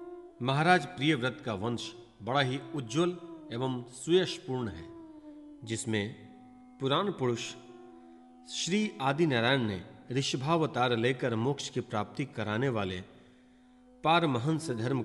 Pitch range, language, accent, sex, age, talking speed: 115-170 Hz, Hindi, native, male, 40-59, 105 wpm